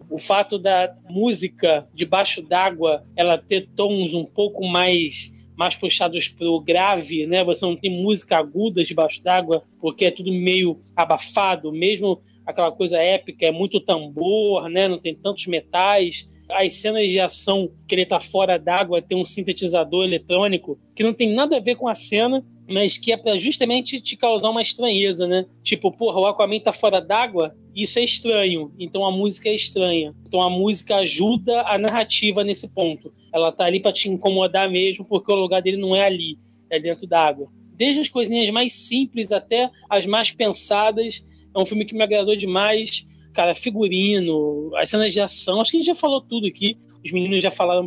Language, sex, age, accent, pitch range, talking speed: Portuguese, male, 20-39, Brazilian, 170-210 Hz, 185 wpm